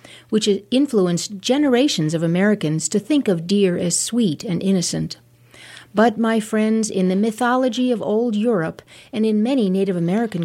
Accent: American